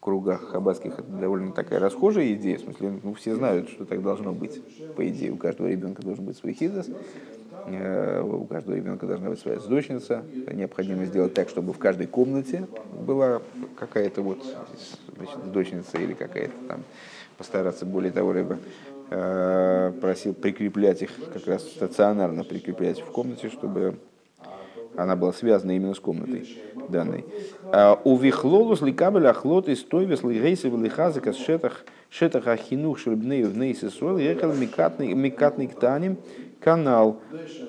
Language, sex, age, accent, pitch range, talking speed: Russian, male, 30-49, native, 100-140 Hz, 140 wpm